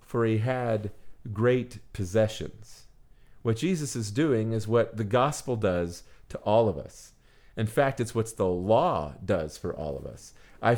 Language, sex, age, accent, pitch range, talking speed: English, male, 40-59, American, 110-135 Hz, 165 wpm